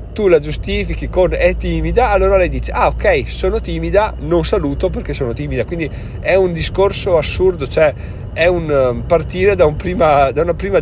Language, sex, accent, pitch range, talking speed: Italian, male, native, 125-175 Hz, 185 wpm